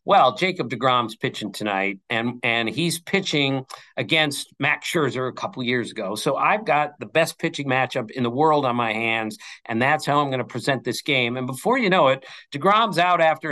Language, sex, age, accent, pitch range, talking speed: English, male, 50-69, American, 135-200 Hz, 205 wpm